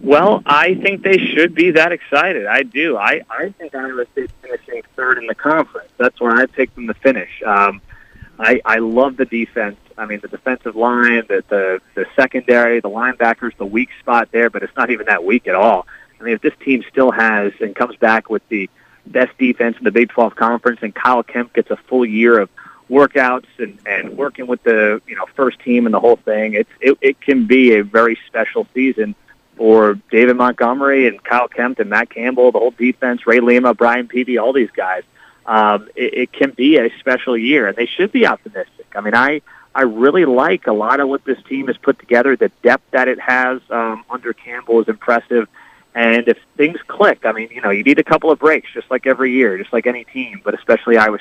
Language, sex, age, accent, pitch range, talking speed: English, male, 40-59, American, 115-130 Hz, 220 wpm